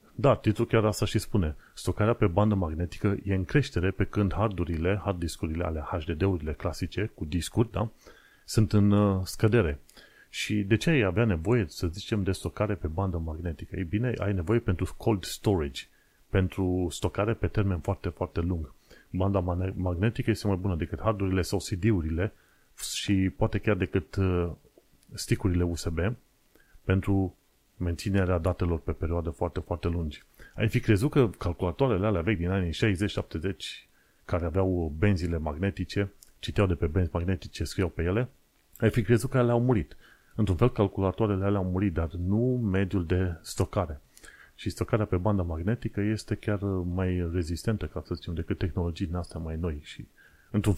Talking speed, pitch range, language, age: 160 wpm, 85-105 Hz, Romanian, 30-49